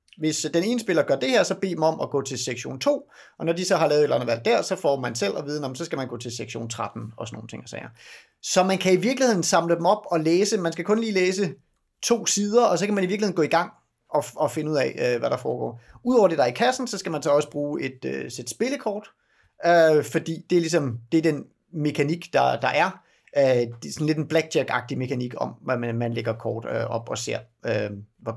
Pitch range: 130-180 Hz